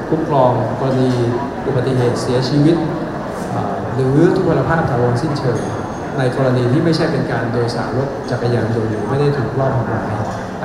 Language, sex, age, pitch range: Thai, male, 60-79, 120-145 Hz